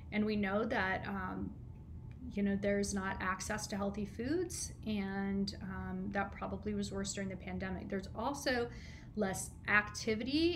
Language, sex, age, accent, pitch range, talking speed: English, female, 30-49, American, 195-220 Hz, 150 wpm